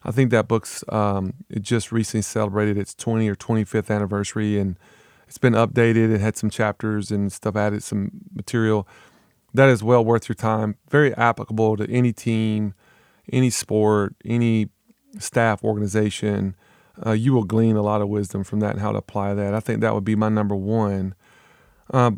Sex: male